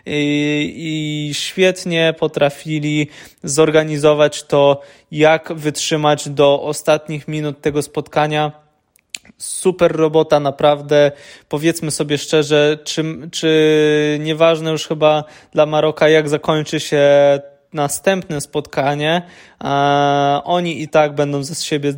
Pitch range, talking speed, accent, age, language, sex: 145-165 Hz, 100 wpm, native, 20-39, Polish, male